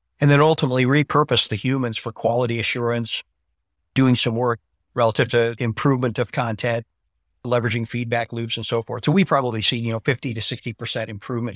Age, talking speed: 50-69, 170 wpm